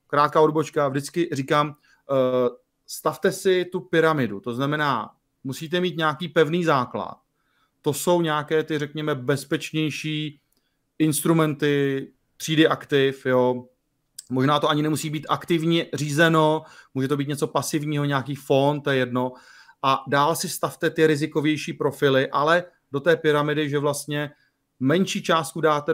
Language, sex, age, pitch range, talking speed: Slovak, male, 30-49, 135-155 Hz, 135 wpm